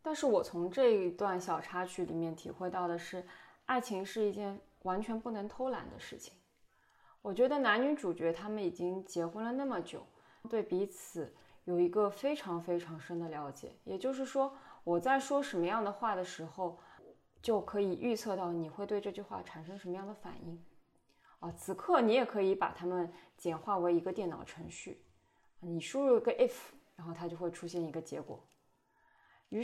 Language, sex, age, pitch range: Chinese, female, 20-39, 170-235 Hz